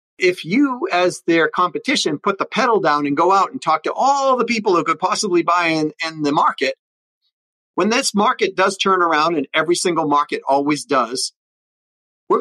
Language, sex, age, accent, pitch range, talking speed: English, male, 40-59, American, 140-180 Hz, 195 wpm